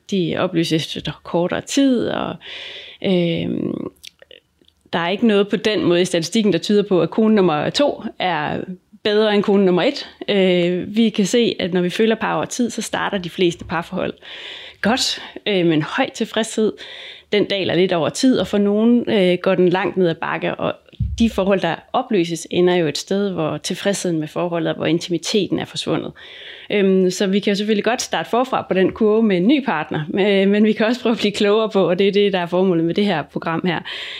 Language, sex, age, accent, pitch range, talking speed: Danish, female, 30-49, native, 175-215 Hz, 205 wpm